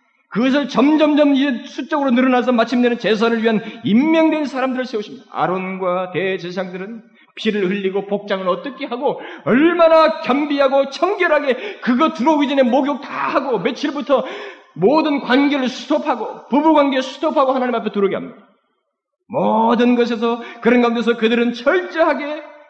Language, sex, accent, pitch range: Korean, male, native, 175-265 Hz